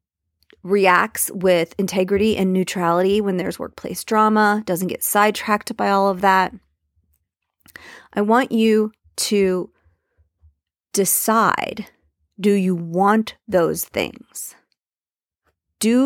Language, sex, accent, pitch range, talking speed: English, female, American, 175-230 Hz, 100 wpm